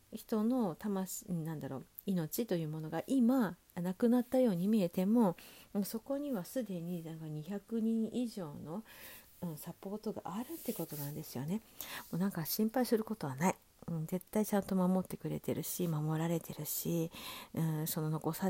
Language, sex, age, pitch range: Japanese, female, 50-69, 165-225 Hz